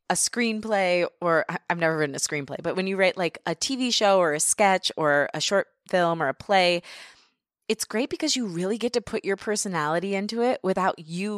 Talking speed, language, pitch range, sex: 210 wpm, English, 165-220 Hz, female